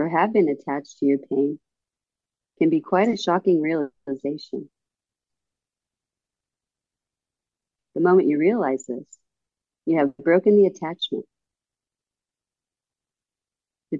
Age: 40-59